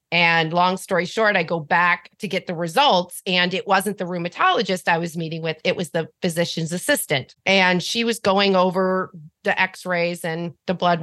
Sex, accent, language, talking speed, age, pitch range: female, American, English, 190 wpm, 40-59, 180-225 Hz